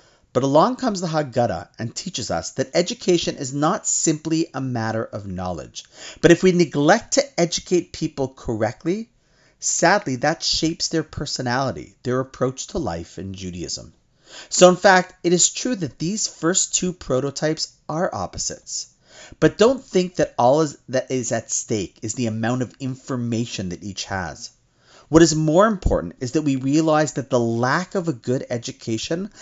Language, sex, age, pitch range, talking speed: English, male, 40-59, 125-175 Hz, 165 wpm